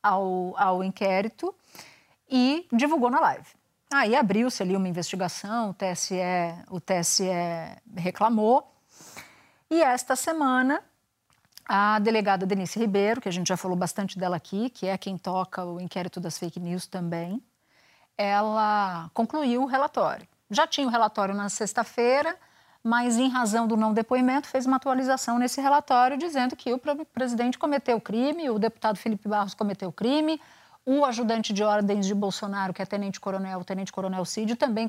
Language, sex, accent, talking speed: Portuguese, female, Brazilian, 150 wpm